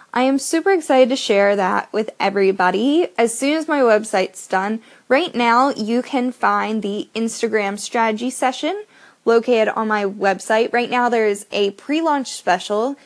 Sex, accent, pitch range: female, American, 210-265 Hz